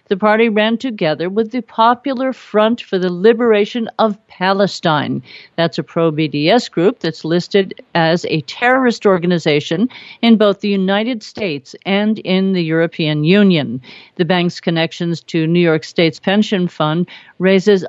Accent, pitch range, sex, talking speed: American, 170-225 Hz, female, 145 wpm